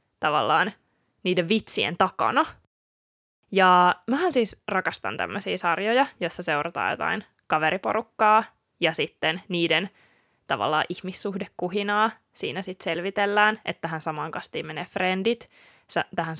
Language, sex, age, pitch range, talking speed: Finnish, female, 20-39, 180-230 Hz, 105 wpm